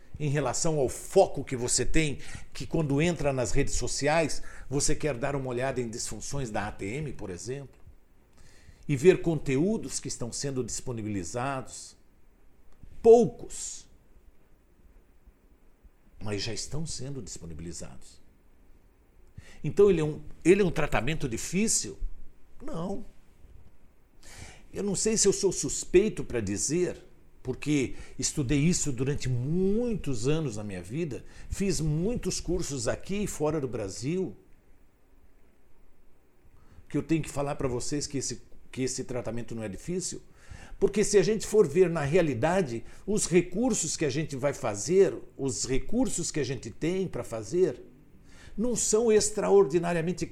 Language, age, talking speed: Portuguese, 60-79, 130 wpm